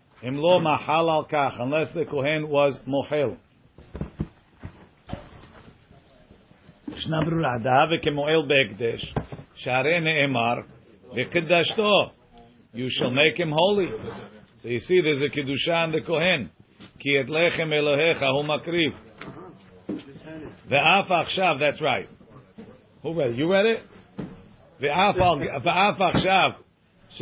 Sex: male